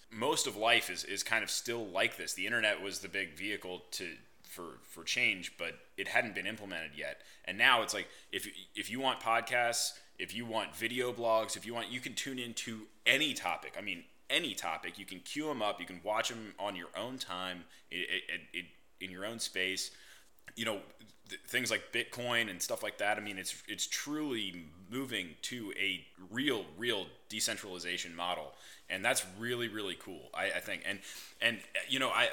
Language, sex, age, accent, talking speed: English, male, 20-39, American, 200 wpm